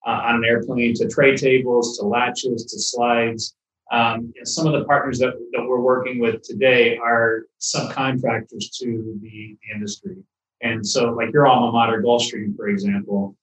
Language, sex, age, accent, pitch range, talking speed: English, male, 30-49, American, 110-130 Hz, 160 wpm